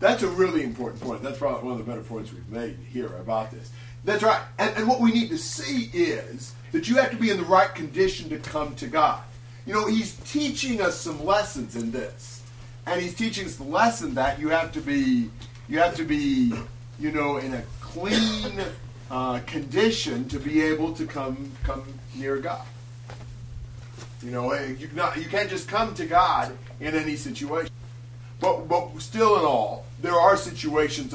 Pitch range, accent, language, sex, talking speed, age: 120-165 Hz, American, English, male, 190 wpm, 40-59